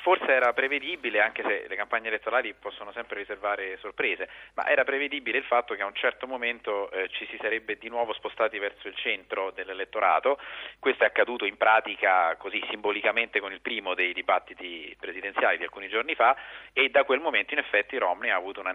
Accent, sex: native, male